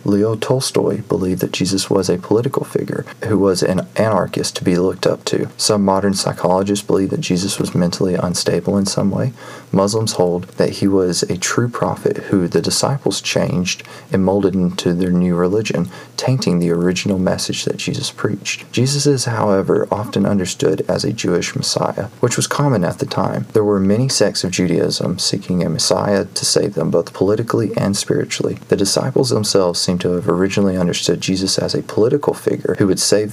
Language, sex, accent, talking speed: English, male, American, 185 wpm